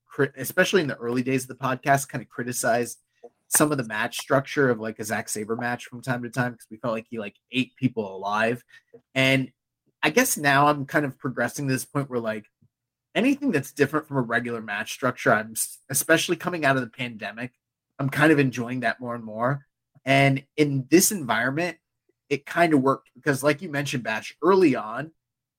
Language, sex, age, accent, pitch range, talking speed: English, male, 30-49, American, 125-145 Hz, 200 wpm